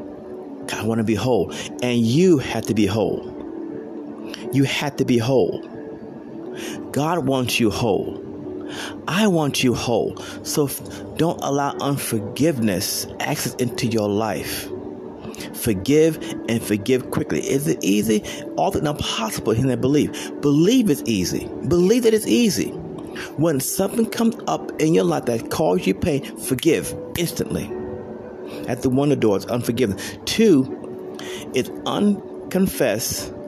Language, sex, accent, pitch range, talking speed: English, male, American, 100-165 Hz, 135 wpm